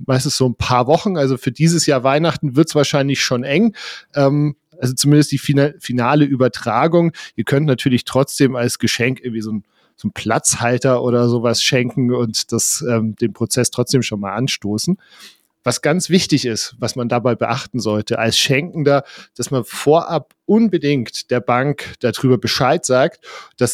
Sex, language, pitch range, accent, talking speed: male, German, 120-150 Hz, German, 155 wpm